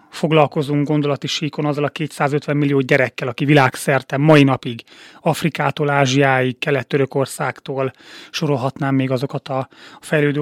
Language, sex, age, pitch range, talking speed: Hungarian, male, 30-49, 130-155 Hz, 110 wpm